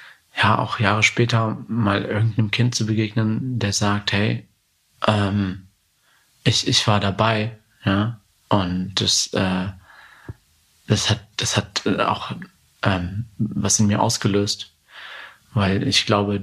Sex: male